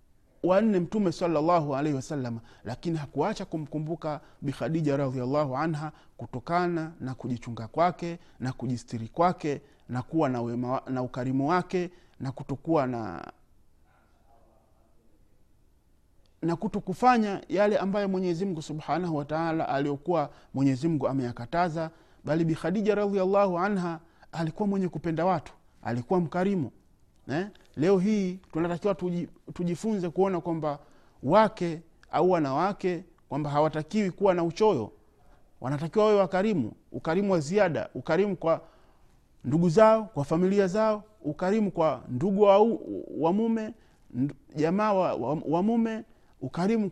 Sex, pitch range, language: male, 140-195 Hz, Swahili